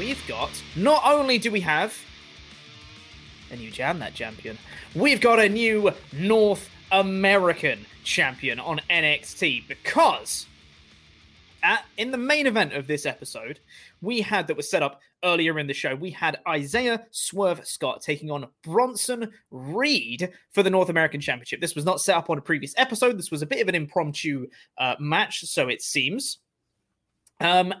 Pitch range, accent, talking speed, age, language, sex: 145-195 Hz, British, 165 wpm, 20-39, English, male